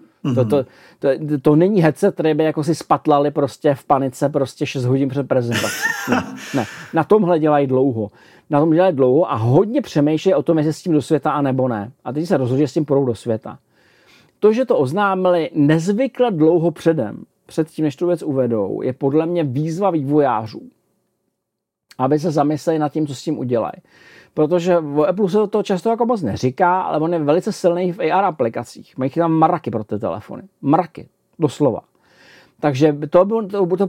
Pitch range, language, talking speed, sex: 140-175 Hz, Czech, 175 wpm, male